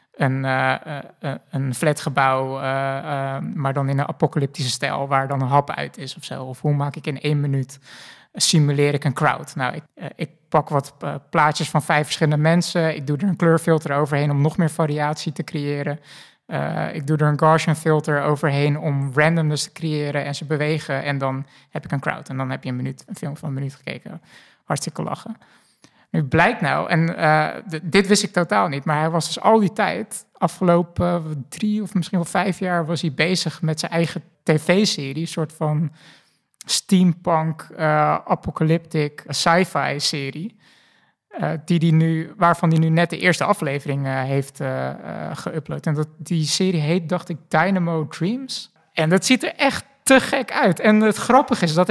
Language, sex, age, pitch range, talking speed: Dutch, male, 20-39, 145-175 Hz, 175 wpm